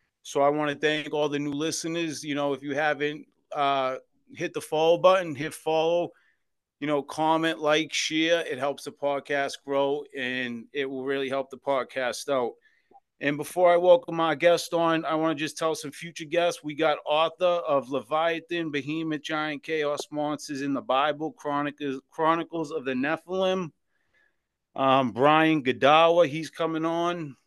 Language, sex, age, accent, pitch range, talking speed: English, male, 30-49, American, 140-165 Hz, 170 wpm